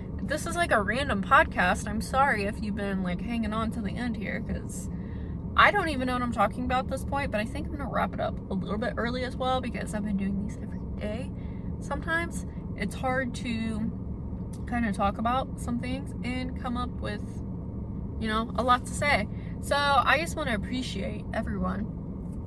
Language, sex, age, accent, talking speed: English, female, 20-39, American, 210 wpm